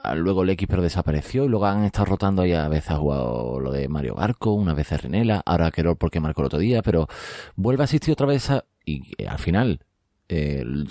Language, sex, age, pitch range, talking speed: Spanish, male, 30-49, 75-100 Hz, 225 wpm